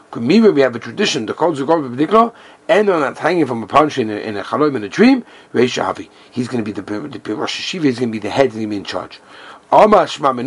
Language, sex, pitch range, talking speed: English, male, 125-190 Hz, 235 wpm